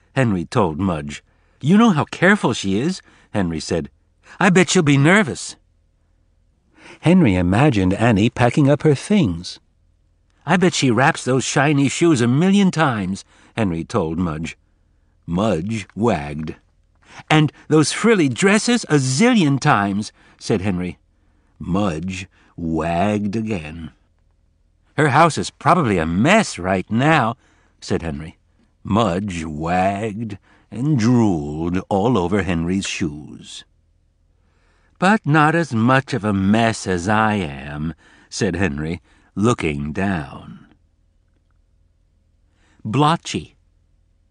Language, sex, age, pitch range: Chinese, male, 60-79, 80-135 Hz